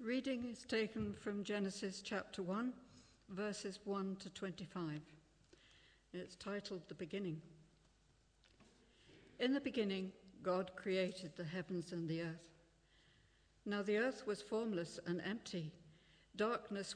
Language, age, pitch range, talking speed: English, 60-79, 165-205 Hz, 115 wpm